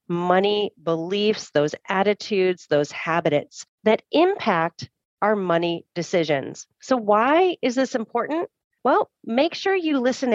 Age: 40-59